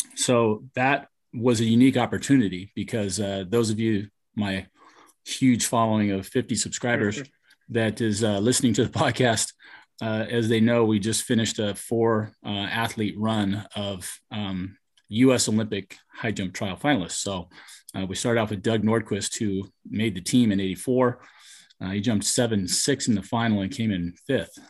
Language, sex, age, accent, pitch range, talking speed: English, male, 30-49, American, 100-115 Hz, 170 wpm